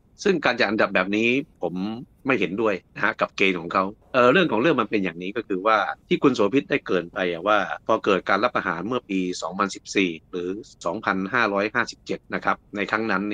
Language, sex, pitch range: Thai, male, 90-110 Hz